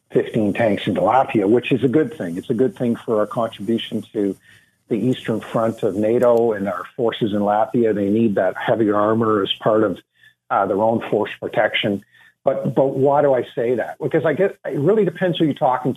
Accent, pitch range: American, 110-150 Hz